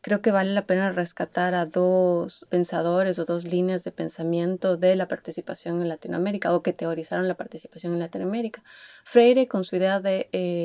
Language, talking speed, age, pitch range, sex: Spanish, 180 wpm, 20-39, 180-215 Hz, female